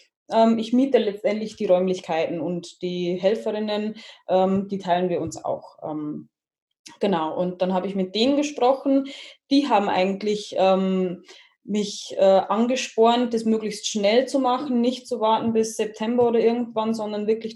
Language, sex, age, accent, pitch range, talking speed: German, female, 20-39, German, 195-240 Hz, 140 wpm